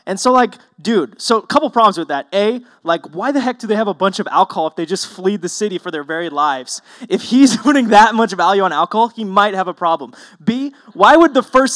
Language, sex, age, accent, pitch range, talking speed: English, male, 20-39, American, 170-235 Hz, 255 wpm